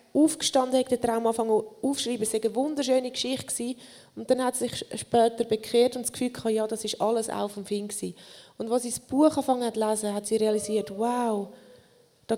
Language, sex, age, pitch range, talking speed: German, female, 20-39, 215-255 Hz, 195 wpm